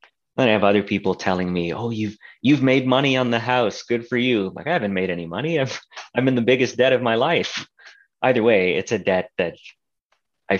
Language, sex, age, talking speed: English, male, 30-49, 225 wpm